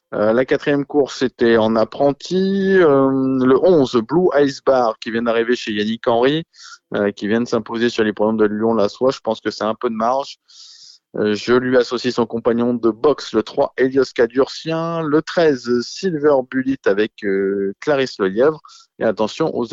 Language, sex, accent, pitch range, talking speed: French, male, French, 115-145 Hz, 190 wpm